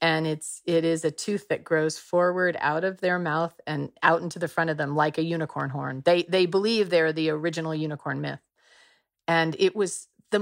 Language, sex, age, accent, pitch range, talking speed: English, female, 40-59, American, 155-185 Hz, 205 wpm